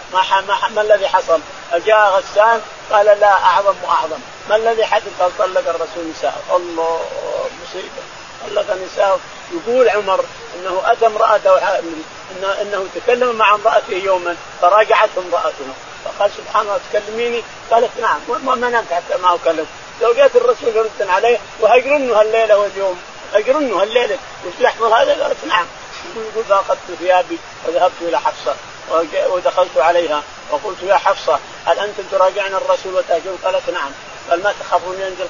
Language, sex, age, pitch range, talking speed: Arabic, male, 50-69, 175-220 Hz, 145 wpm